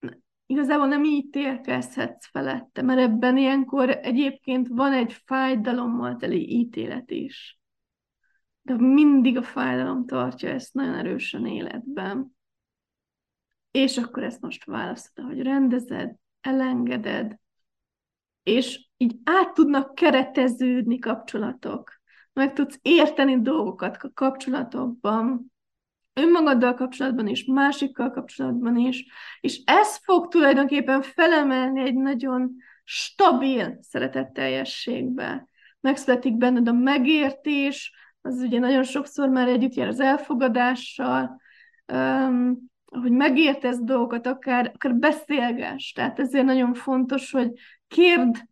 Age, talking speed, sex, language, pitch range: 20-39, 105 wpm, female, Hungarian, 245-275 Hz